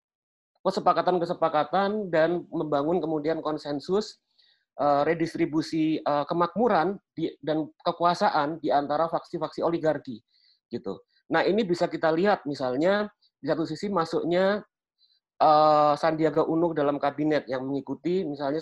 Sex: male